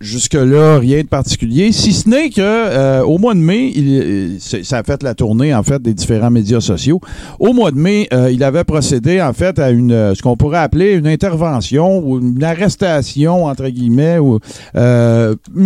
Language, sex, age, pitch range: French, male, 50-69, 115-150 Hz